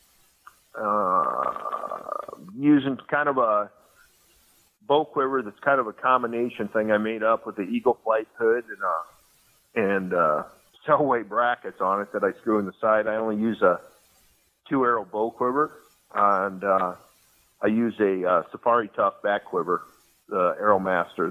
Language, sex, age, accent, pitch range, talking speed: English, male, 40-59, American, 105-150 Hz, 160 wpm